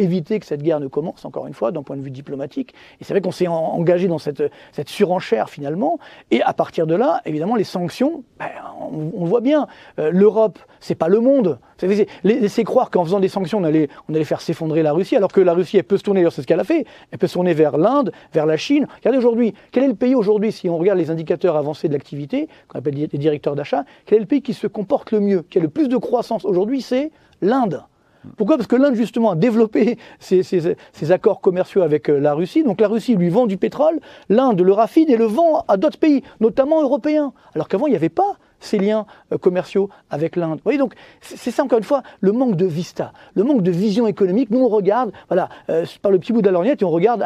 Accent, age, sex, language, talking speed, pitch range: French, 40-59, male, French, 245 wpm, 170-245 Hz